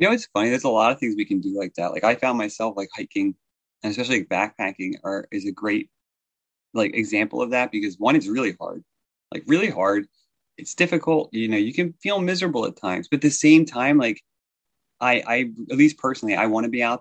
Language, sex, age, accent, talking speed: English, male, 30-49, American, 230 wpm